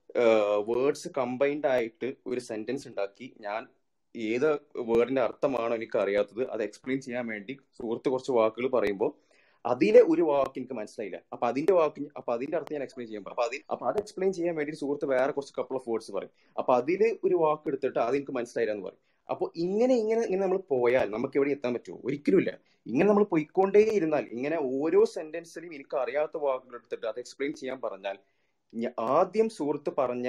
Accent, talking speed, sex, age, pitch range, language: native, 160 wpm, male, 30-49, 130-175 Hz, Malayalam